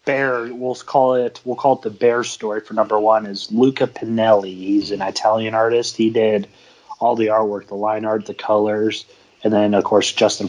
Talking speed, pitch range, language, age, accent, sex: 200 wpm, 105-120 Hz, English, 30-49, American, male